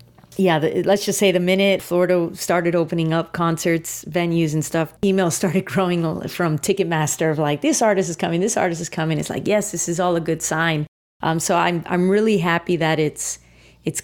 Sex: female